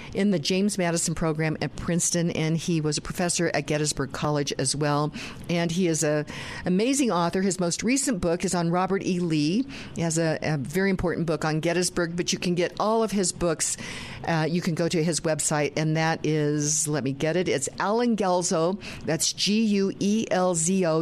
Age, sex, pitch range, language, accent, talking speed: 50-69, female, 160-195 Hz, English, American, 195 wpm